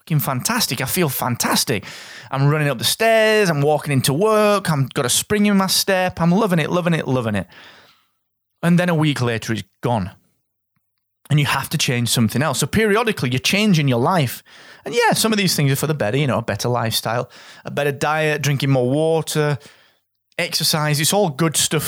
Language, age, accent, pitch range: English, 30-49, British, 125-185 Hz